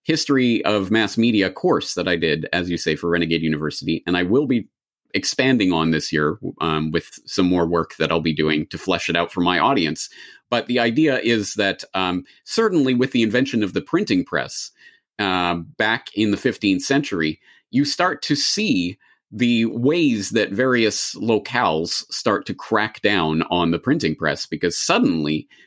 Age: 30-49